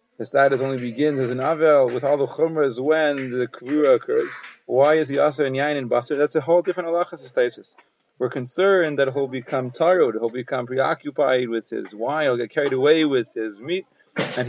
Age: 30-49